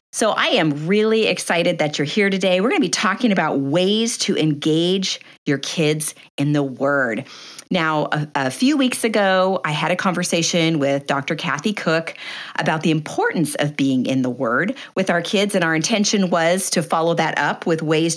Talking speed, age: 190 wpm, 50-69